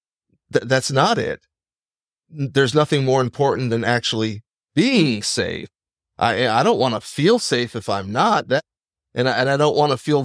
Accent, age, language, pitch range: American, 30-49, English, 105-135 Hz